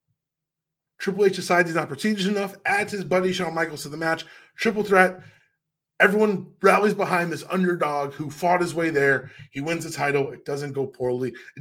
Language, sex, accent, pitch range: English, male, American, 150-210 Hz